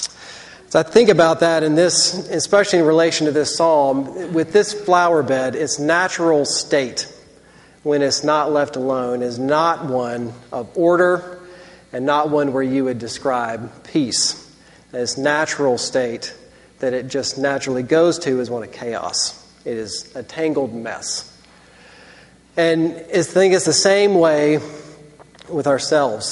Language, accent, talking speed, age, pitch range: English, American, 150 wpm, 40-59, 135-165 Hz